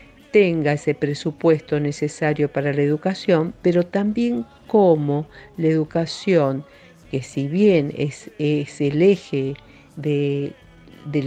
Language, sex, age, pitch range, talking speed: Spanish, female, 50-69, 145-180 Hz, 110 wpm